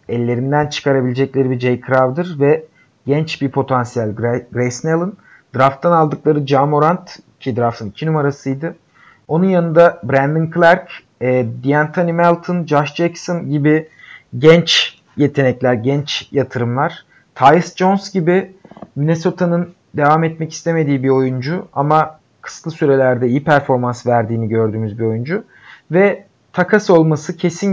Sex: male